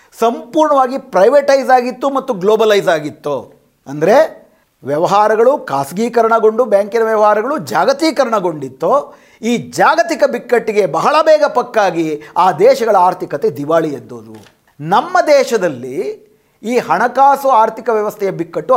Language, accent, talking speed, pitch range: Kannada, native, 95 wpm, 165-265 Hz